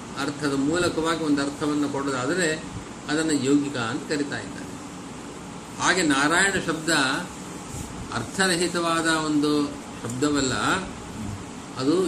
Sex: male